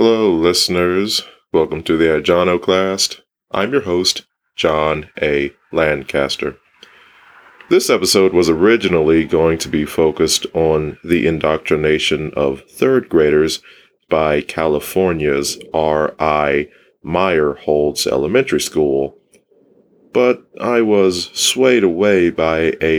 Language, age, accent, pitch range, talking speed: English, 30-49, American, 75-95 Hz, 100 wpm